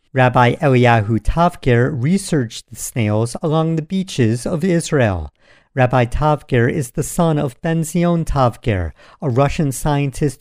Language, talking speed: English, 125 wpm